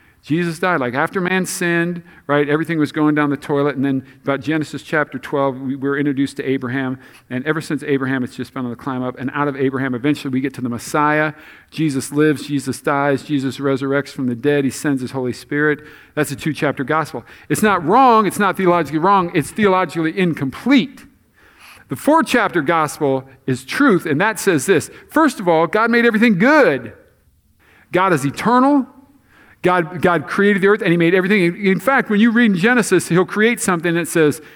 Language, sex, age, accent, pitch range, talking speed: English, male, 50-69, American, 135-195 Hz, 195 wpm